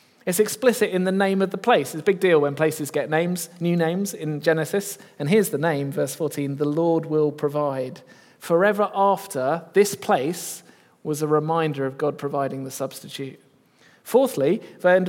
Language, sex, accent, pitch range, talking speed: English, male, British, 135-180 Hz, 180 wpm